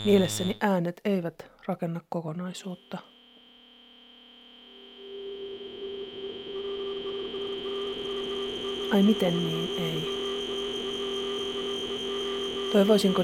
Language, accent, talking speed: Finnish, native, 45 wpm